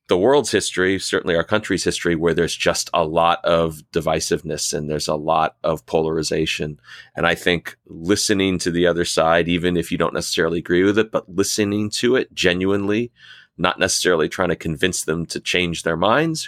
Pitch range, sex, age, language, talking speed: 80-90 Hz, male, 30-49, English, 185 wpm